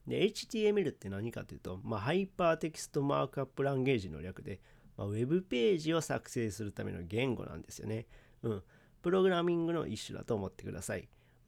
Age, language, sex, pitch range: 40-59, Japanese, male, 110-150 Hz